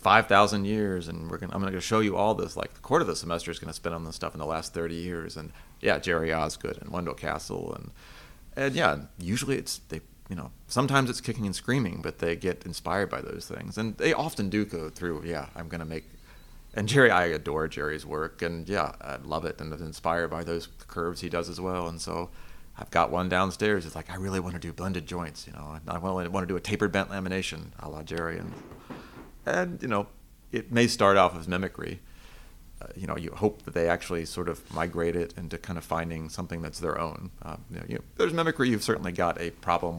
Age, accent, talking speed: 30-49, American, 240 wpm